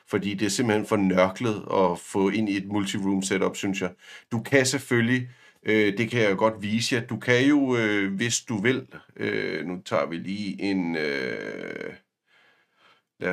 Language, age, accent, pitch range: Danish, 50-69, native, 105-135 Hz